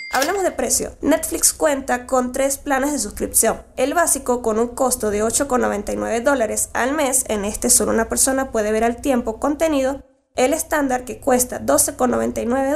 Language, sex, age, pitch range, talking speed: Spanish, female, 10-29, 230-290 Hz, 165 wpm